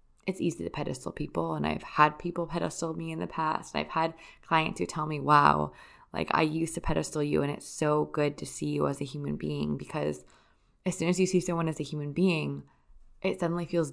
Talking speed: 230 wpm